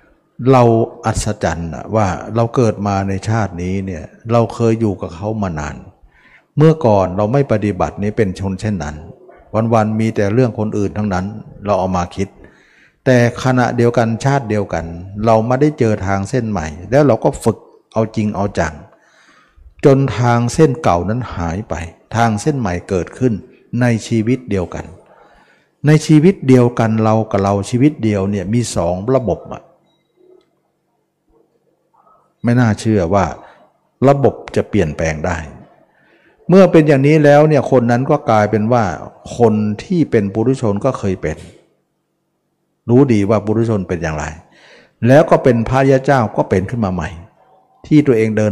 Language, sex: Thai, male